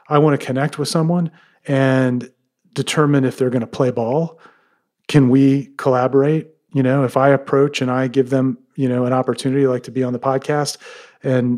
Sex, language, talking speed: male, English, 190 wpm